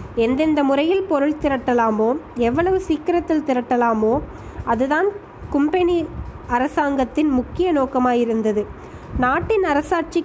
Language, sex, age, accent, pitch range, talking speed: Tamil, female, 20-39, native, 250-310 Hz, 80 wpm